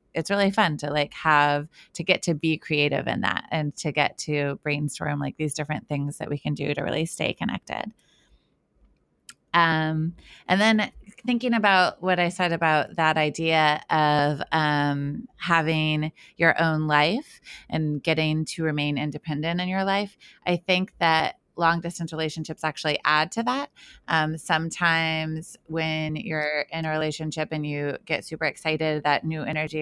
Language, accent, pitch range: English, American, 150-165 Hz